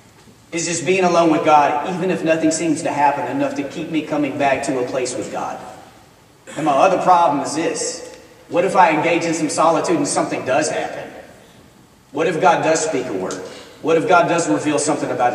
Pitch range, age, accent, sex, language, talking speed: 150-180 Hz, 40-59, American, male, English, 210 wpm